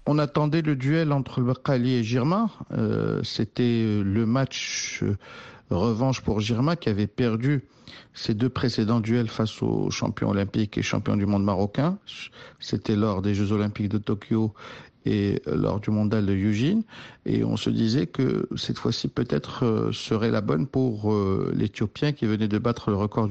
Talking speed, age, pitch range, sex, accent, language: 170 wpm, 50-69, 110-135 Hz, male, French, French